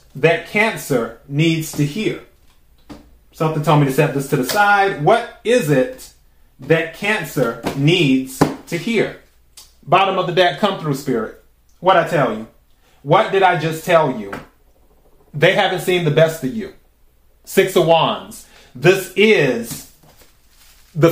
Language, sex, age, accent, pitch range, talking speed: English, male, 30-49, American, 130-165 Hz, 150 wpm